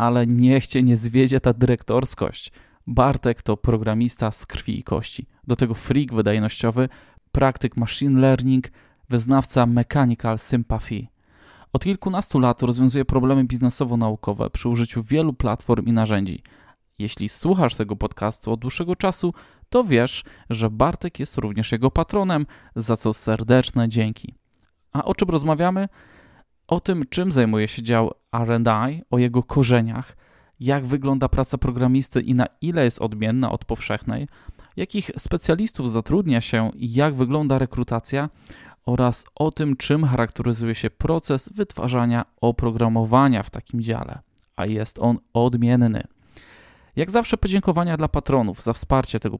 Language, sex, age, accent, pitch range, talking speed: Polish, male, 20-39, native, 115-140 Hz, 135 wpm